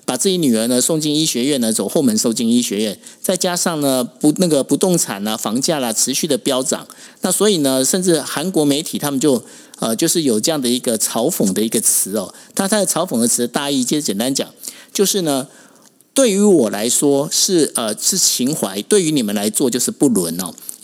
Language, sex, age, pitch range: Chinese, male, 50-69, 145-230 Hz